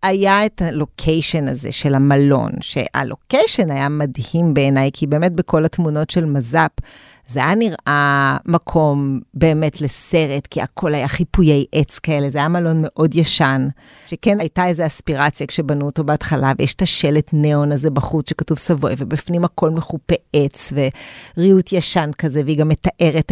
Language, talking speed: Hebrew, 150 wpm